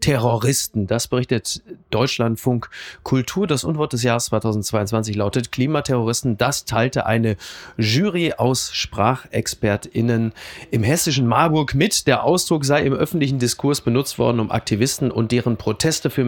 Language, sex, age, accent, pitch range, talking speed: German, male, 30-49, German, 115-150 Hz, 135 wpm